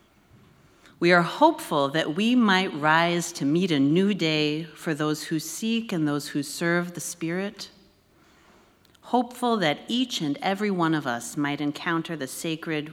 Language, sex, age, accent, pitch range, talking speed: English, female, 40-59, American, 145-195 Hz, 160 wpm